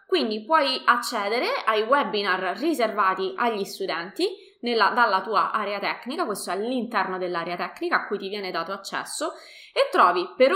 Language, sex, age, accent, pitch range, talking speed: Italian, female, 20-39, native, 205-265 Hz, 150 wpm